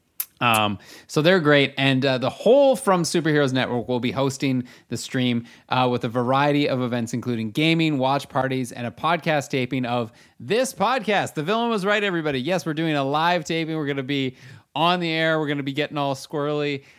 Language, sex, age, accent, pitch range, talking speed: English, male, 30-49, American, 120-160 Hz, 205 wpm